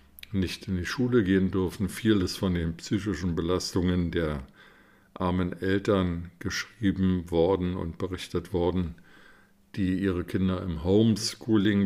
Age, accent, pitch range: 50-69, German, 85-100 Hz